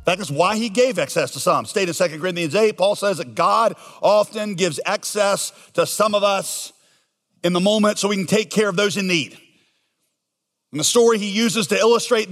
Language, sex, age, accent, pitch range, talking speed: English, male, 40-59, American, 200-240 Hz, 210 wpm